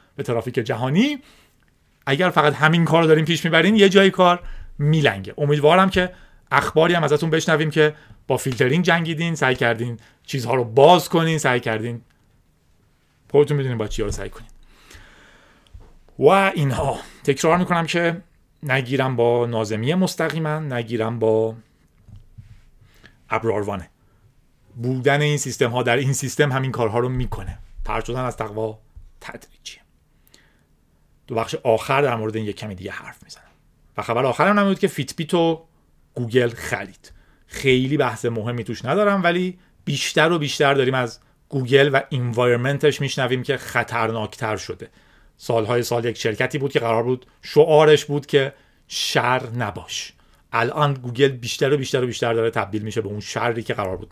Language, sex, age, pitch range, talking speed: Persian, male, 30-49, 110-150 Hz, 145 wpm